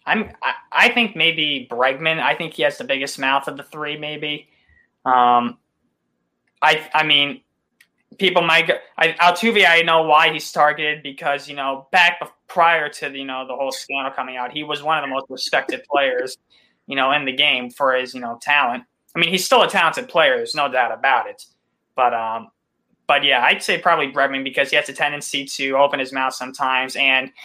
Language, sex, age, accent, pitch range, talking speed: English, male, 20-39, American, 130-155 Hz, 205 wpm